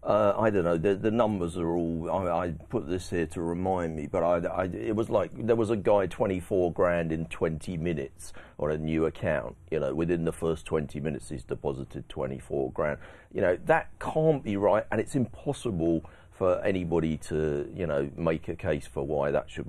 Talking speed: 215 wpm